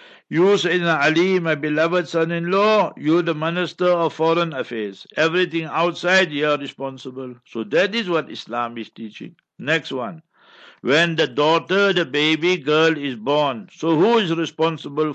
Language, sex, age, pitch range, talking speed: English, male, 60-79, 140-180 Hz, 145 wpm